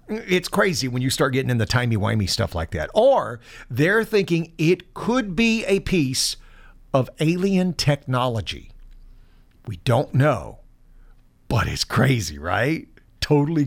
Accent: American